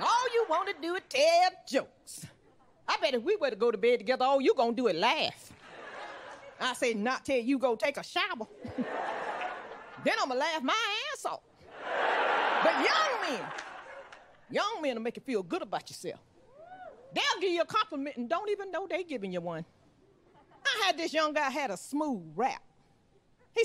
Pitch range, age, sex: 245-360 Hz, 40-59, female